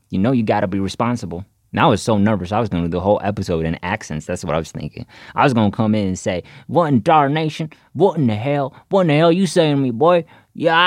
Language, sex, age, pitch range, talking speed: English, male, 30-49, 95-145 Hz, 270 wpm